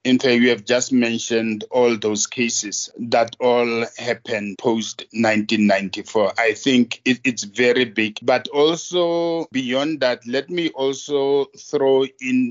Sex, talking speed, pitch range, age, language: male, 135 wpm, 115-140 Hz, 50-69, English